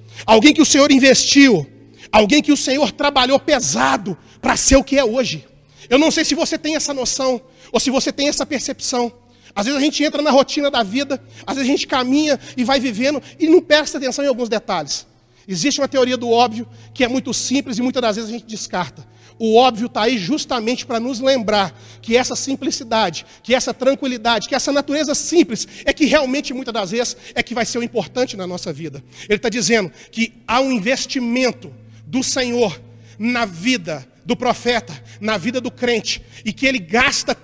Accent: Brazilian